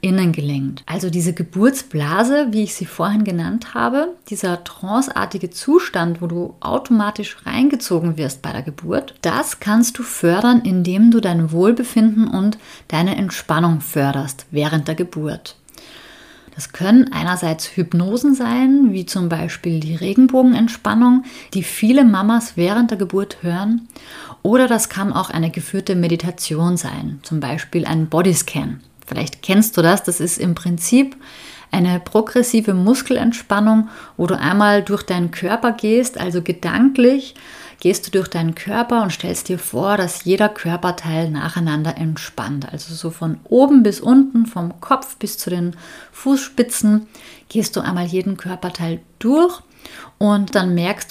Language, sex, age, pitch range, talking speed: German, female, 30-49, 170-230 Hz, 140 wpm